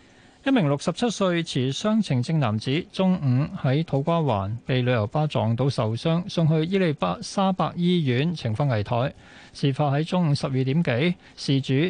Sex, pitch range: male, 125-170 Hz